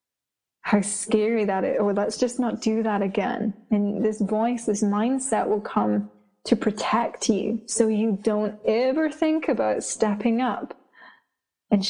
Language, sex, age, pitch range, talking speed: English, female, 20-39, 205-230 Hz, 150 wpm